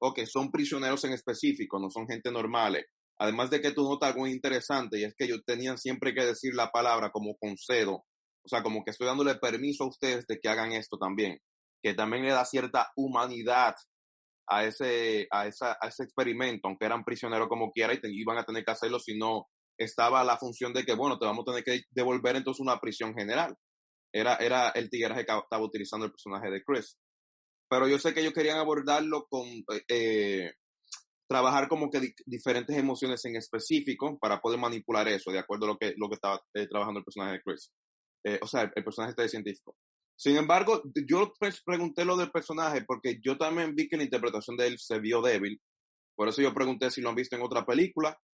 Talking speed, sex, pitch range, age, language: 215 wpm, male, 110-140 Hz, 30-49, Spanish